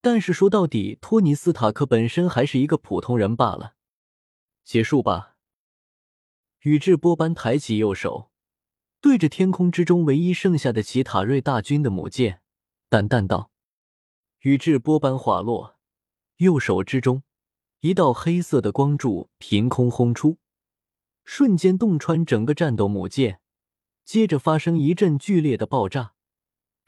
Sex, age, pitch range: male, 20-39, 110-170 Hz